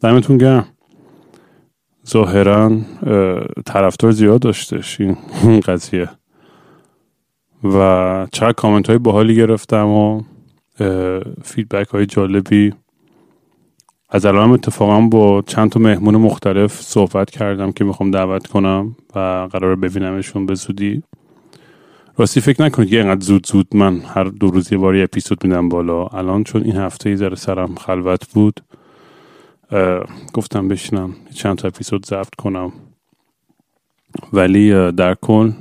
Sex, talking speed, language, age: male, 115 wpm, Persian, 30-49